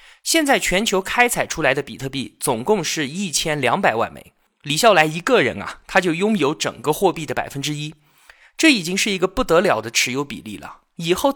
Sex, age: male, 20-39